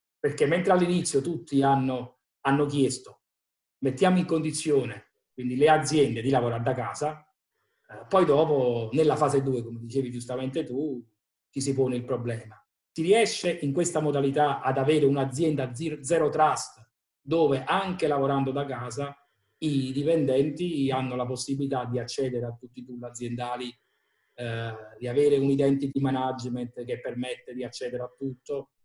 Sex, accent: male, native